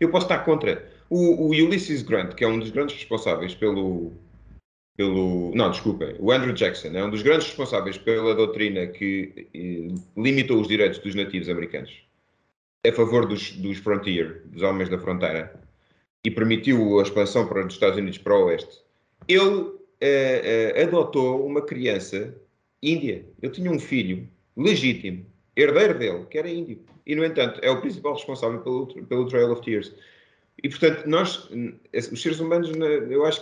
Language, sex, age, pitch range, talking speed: Portuguese, male, 30-49, 105-155 Hz, 165 wpm